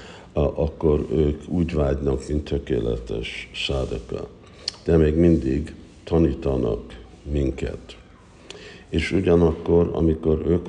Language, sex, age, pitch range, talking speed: Hungarian, male, 60-79, 70-85 Hz, 90 wpm